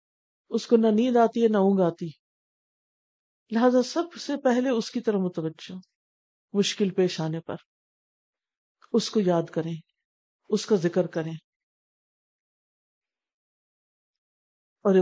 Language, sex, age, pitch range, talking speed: Urdu, female, 50-69, 165-215 Hz, 120 wpm